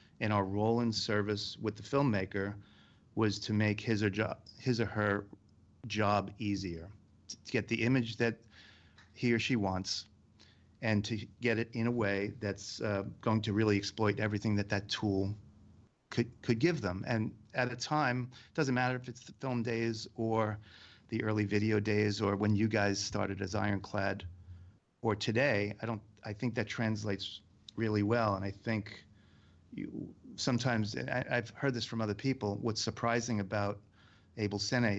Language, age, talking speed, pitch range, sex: English, 40-59, 170 wpm, 100-115 Hz, male